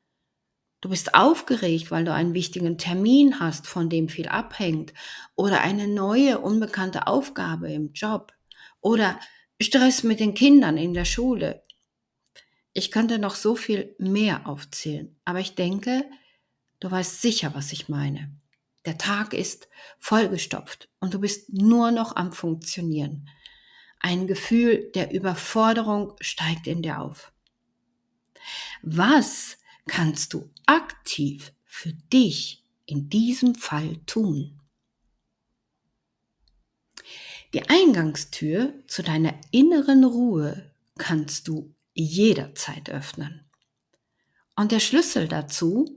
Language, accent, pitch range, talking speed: German, German, 155-225 Hz, 115 wpm